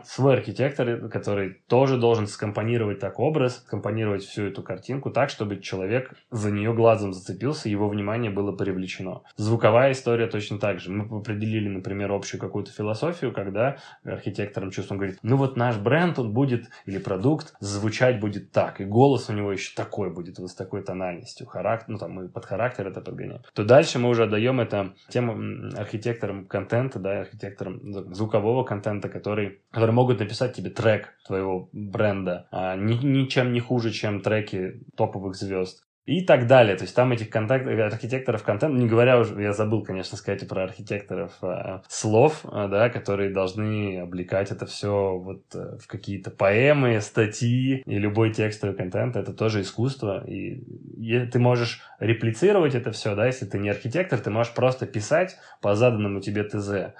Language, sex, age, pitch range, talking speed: Russian, male, 20-39, 100-120 Hz, 160 wpm